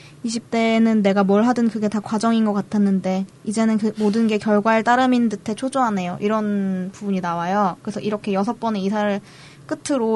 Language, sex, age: Korean, female, 20-39